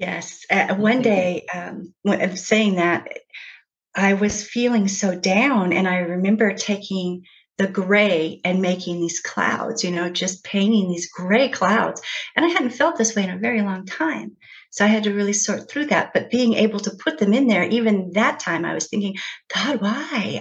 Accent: American